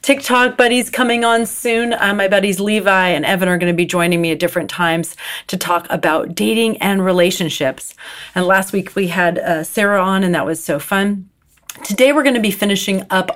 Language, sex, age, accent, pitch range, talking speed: English, female, 40-59, American, 170-220 Hz, 205 wpm